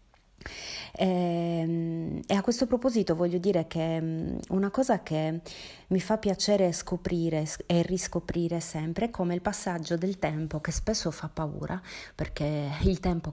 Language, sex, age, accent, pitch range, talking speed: Italian, female, 30-49, native, 165-200 Hz, 135 wpm